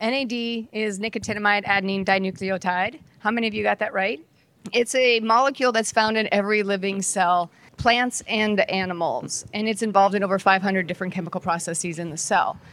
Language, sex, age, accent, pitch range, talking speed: English, female, 40-59, American, 175-215 Hz, 170 wpm